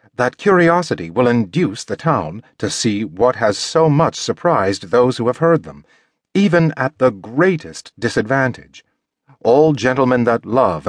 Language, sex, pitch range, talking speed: English, male, 105-145 Hz, 150 wpm